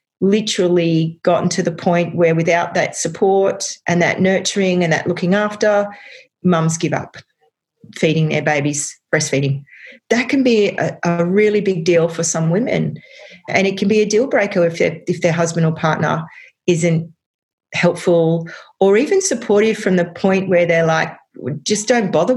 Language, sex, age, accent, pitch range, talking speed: English, female, 40-59, Australian, 165-225 Hz, 165 wpm